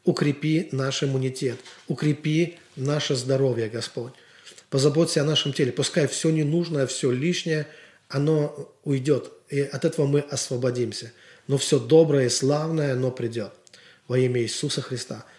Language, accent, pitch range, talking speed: Russian, native, 125-150 Hz, 135 wpm